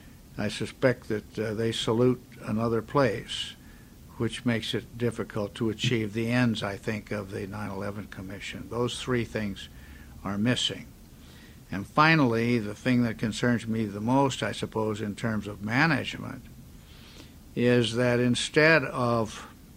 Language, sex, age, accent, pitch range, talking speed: English, male, 60-79, American, 105-125 Hz, 140 wpm